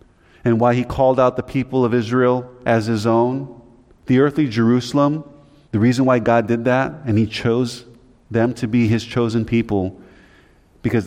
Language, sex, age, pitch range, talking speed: English, male, 30-49, 95-125 Hz, 170 wpm